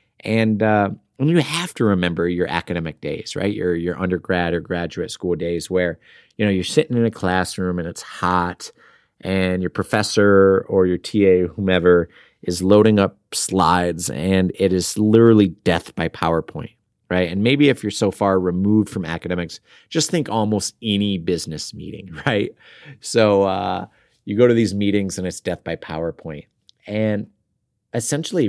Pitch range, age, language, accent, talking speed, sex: 90-115 Hz, 30-49, English, American, 165 wpm, male